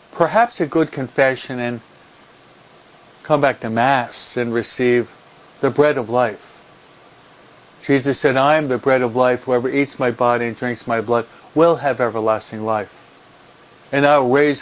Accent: American